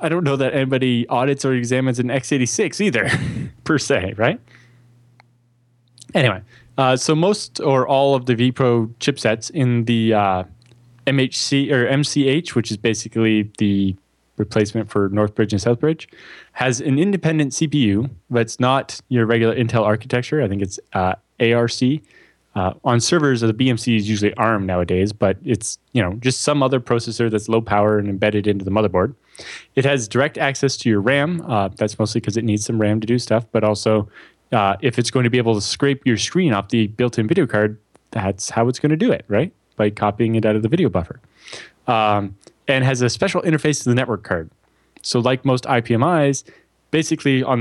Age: 20-39